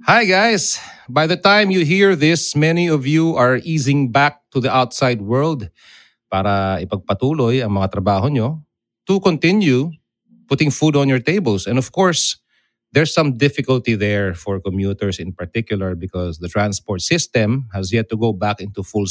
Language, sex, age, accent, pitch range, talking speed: English, male, 30-49, Filipino, 105-155 Hz, 165 wpm